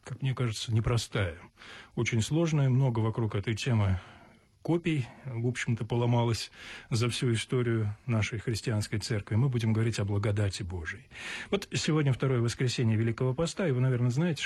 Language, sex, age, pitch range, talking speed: Russian, male, 20-39, 110-140 Hz, 150 wpm